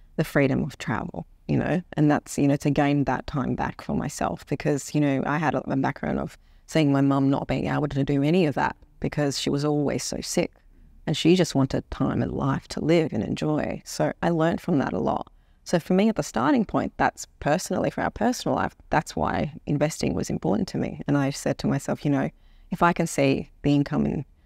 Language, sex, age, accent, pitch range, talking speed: English, female, 30-49, Australian, 135-165 Hz, 230 wpm